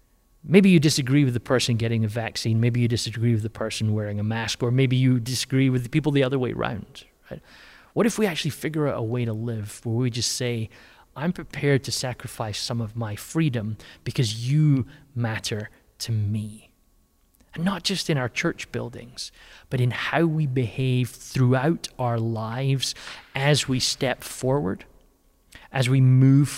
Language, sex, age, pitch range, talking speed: English, male, 30-49, 110-140 Hz, 175 wpm